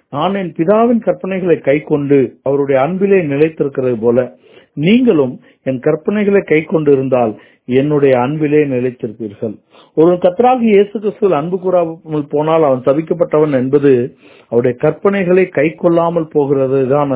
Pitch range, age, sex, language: 140-170 Hz, 50-69, male, Tamil